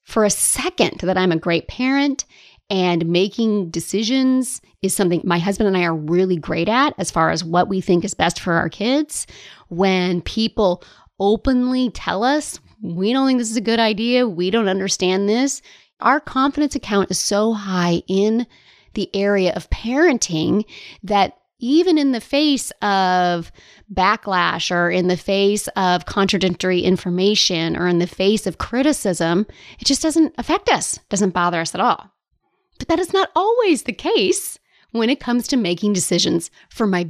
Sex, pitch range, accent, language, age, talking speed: female, 180-260 Hz, American, English, 30-49, 170 wpm